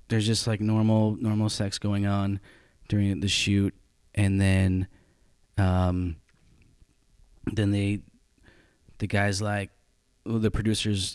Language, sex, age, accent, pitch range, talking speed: English, male, 20-39, American, 90-105 Hz, 120 wpm